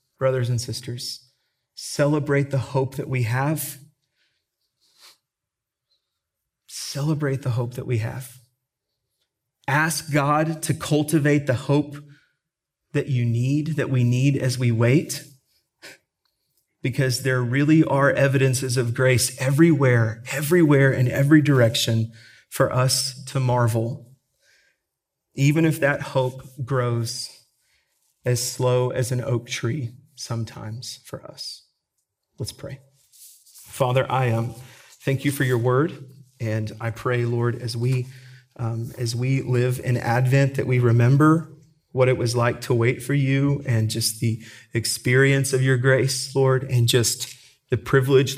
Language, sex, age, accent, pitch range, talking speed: English, male, 30-49, American, 125-140 Hz, 130 wpm